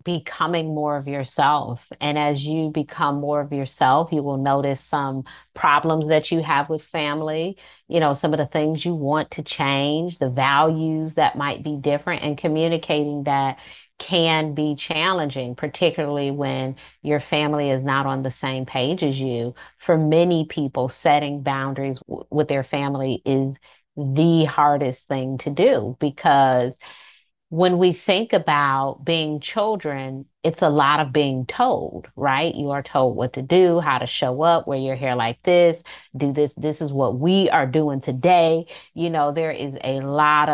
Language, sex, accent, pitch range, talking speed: English, female, American, 135-165 Hz, 165 wpm